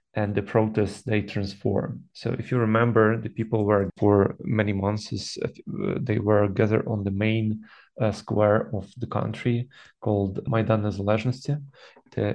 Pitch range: 105-120 Hz